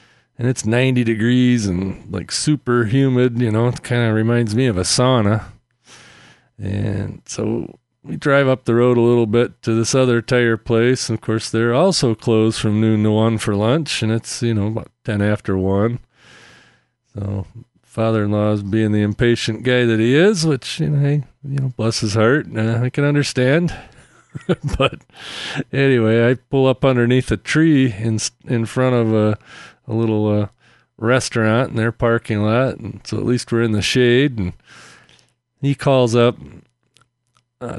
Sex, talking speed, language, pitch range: male, 175 wpm, English, 110-135 Hz